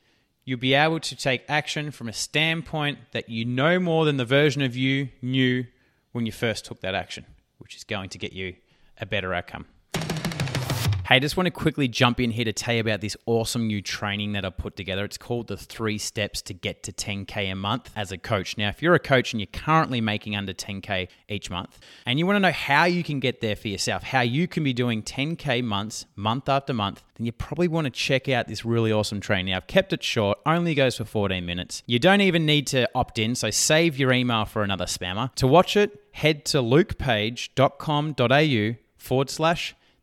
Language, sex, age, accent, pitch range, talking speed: English, male, 20-39, Australian, 110-150 Hz, 215 wpm